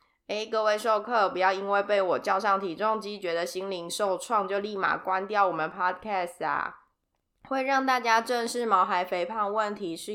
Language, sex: Chinese, female